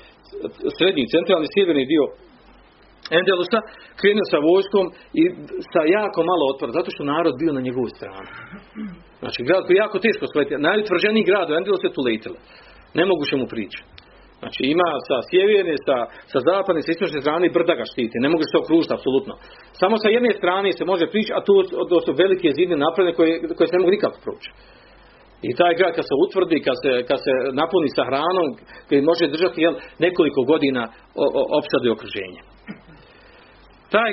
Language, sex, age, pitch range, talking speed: Croatian, male, 40-59, 170-255 Hz, 165 wpm